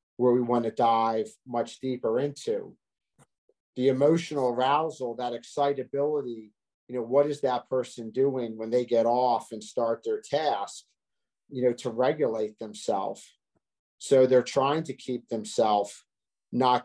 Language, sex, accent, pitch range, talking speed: English, male, American, 115-130 Hz, 145 wpm